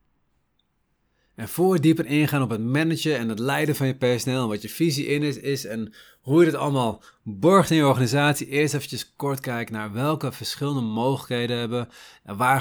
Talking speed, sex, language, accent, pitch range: 195 wpm, male, Dutch, Dutch, 115-160 Hz